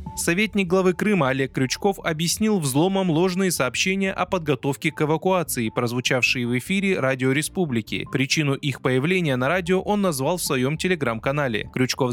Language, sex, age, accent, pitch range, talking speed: Russian, male, 20-39, native, 130-180 Hz, 145 wpm